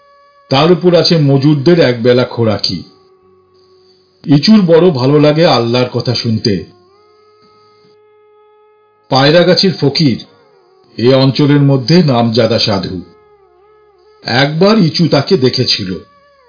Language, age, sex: Bengali, 50-69, male